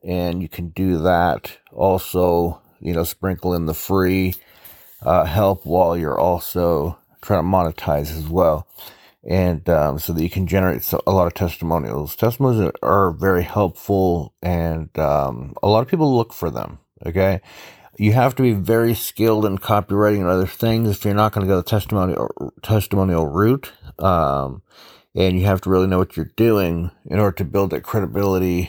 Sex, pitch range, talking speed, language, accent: male, 85-100 Hz, 175 wpm, English, American